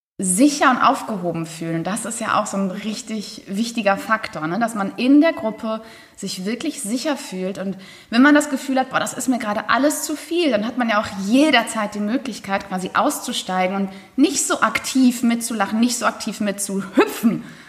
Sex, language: female, German